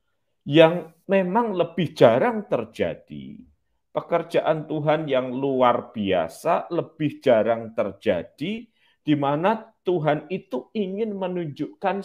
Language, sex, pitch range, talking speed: Malay, male, 115-170 Hz, 95 wpm